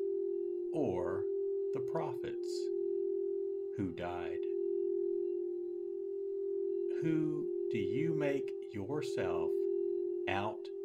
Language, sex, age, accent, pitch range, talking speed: English, male, 60-79, American, 370-385 Hz, 60 wpm